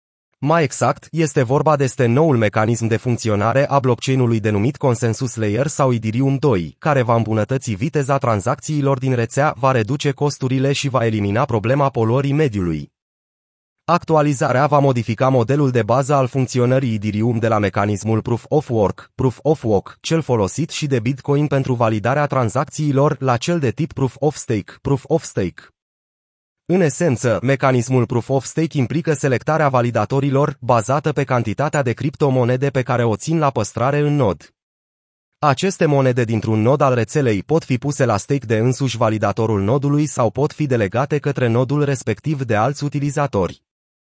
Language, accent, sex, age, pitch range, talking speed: Romanian, native, male, 30-49, 115-145 Hz, 145 wpm